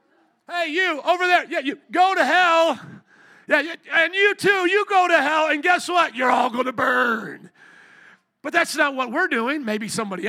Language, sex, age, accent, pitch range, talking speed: English, male, 40-59, American, 220-305 Hz, 185 wpm